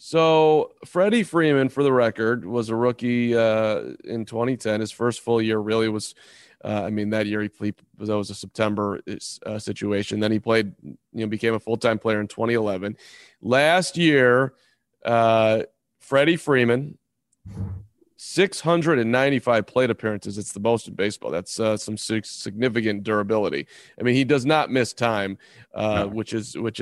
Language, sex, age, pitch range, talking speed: English, male, 30-49, 110-140 Hz, 155 wpm